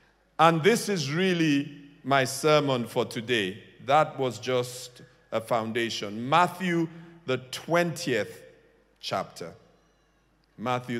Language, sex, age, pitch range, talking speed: English, male, 50-69, 140-185 Hz, 100 wpm